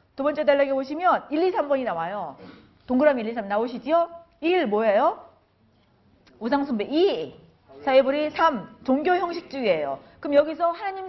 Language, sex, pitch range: Korean, female, 230-330 Hz